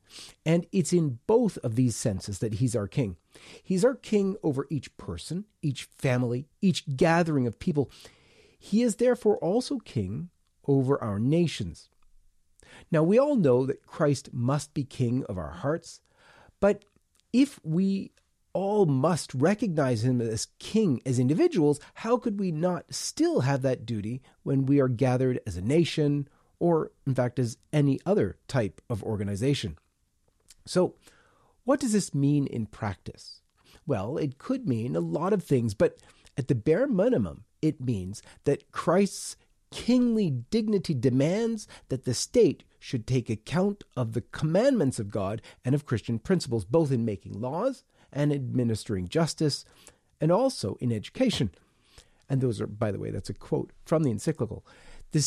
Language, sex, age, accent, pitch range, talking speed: English, male, 40-59, American, 120-180 Hz, 155 wpm